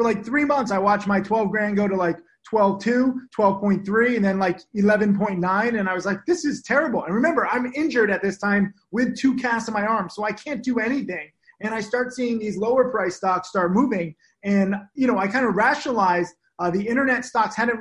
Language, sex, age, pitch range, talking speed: English, male, 30-49, 190-230 Hz, 215 wpm